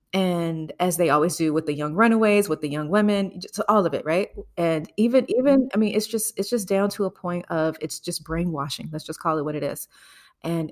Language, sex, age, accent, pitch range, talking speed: English, female, 30-49, American, 165-210 Hz, 240 wpm